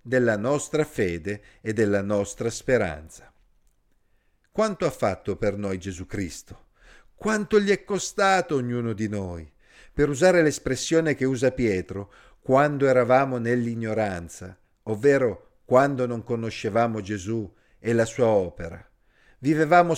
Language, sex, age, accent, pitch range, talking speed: Italian, male, 50-69, native, 110-160 Hz, 120 wpm